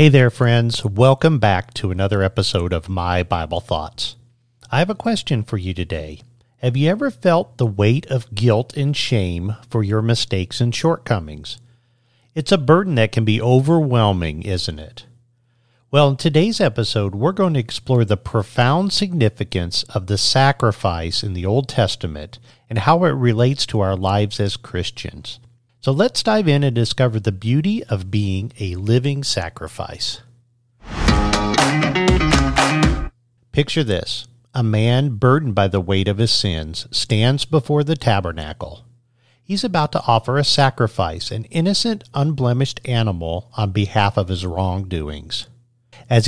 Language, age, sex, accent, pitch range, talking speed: English, 50-69, male, American, 100-130 Hz, 150 wpm